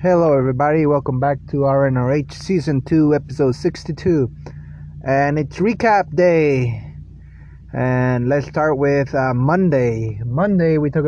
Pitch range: 125-165 Hz